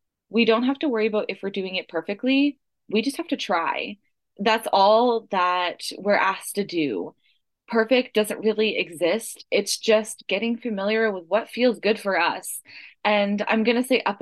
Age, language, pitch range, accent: 20-39, English, 195-240 Hz, American